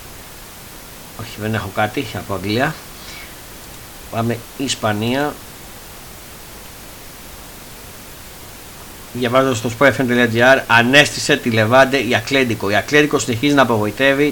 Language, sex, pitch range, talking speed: Greek, male, 115-140 Hz, 90 wpm